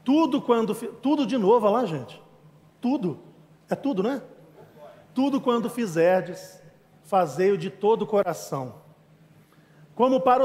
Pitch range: 160-220 Hz